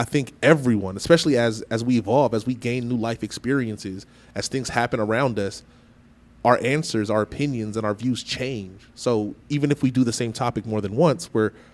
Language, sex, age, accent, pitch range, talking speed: English, male, 30-49, American, 110-125 Hz, 200 wpm